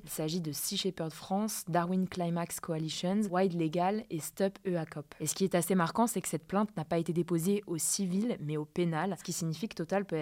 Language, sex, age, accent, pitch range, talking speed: French, female, 20-39, French, 165-195 Hz, 230 wpm